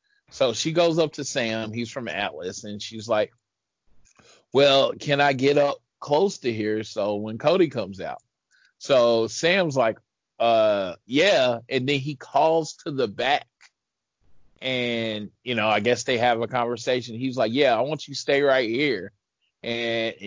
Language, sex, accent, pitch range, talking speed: English, male, American, 110-135 Hz, 170 wpm